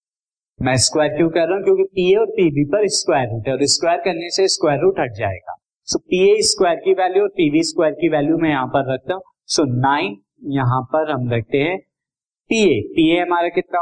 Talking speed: 90 wpm